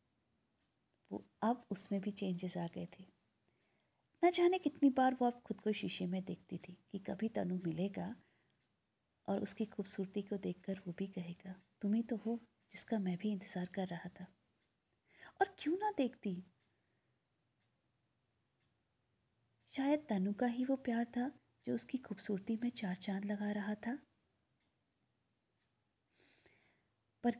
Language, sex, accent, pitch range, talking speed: Hindi, female, native, 185-235 Hz, 140 wpm